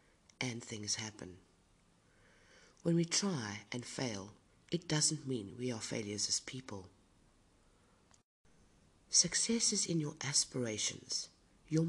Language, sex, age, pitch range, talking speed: English, female, 50-69, 105-155 Hz, 110 wpm